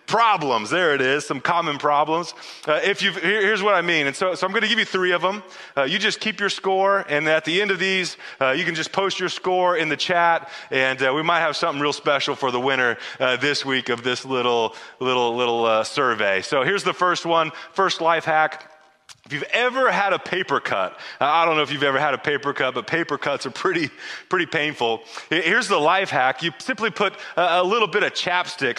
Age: 30-49